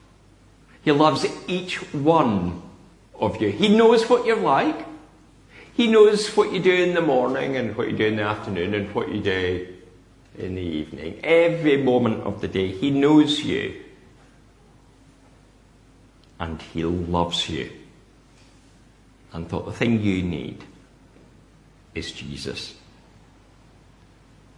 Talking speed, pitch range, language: 130 wpm, 100-130 Hz, English